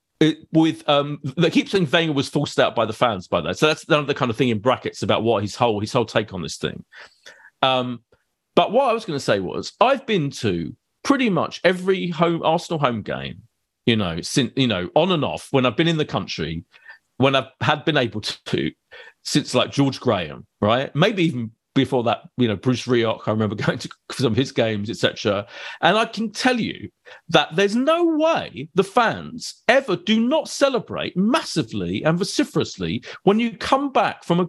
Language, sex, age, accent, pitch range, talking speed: English, male, 40-59, British, 130-210 Hz, 205 wpm